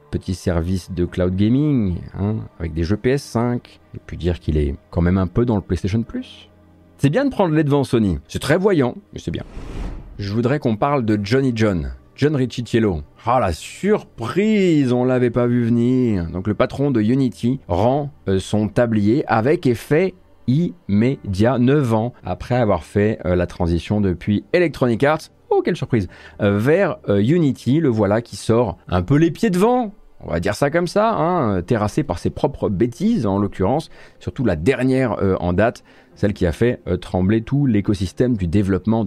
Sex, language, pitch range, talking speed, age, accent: male, French, 95-125 Hz, 185 wpm, 40-59, French